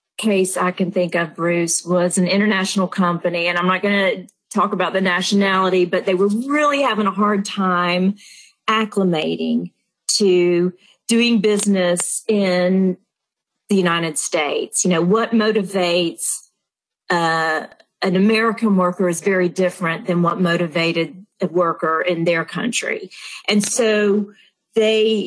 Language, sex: English, female